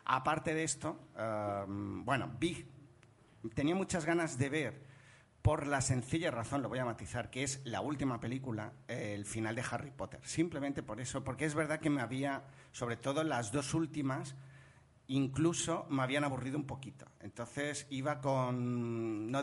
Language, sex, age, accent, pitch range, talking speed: Spanish, male, 40-59, Spanish, 115-145 Hz, 165 wpm